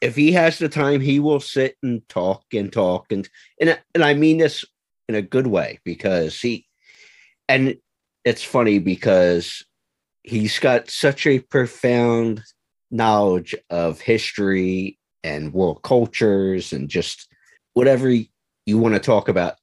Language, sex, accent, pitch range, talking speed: English, male, American, 90-120 Hz, 140 wpm